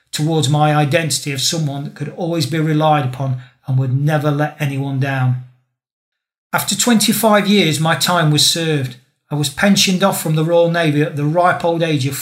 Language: English